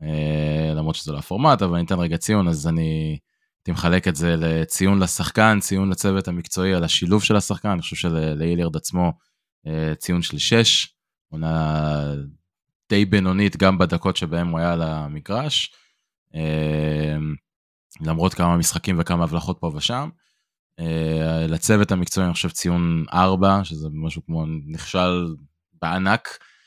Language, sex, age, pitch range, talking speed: Hebrew, male, 20-39, 80-95 Hz, 135 wpm